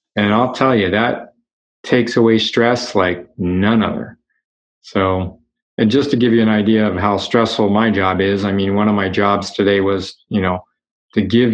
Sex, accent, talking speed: male, American, 190 wpm